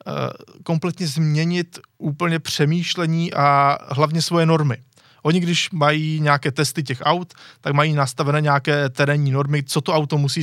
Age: 20-39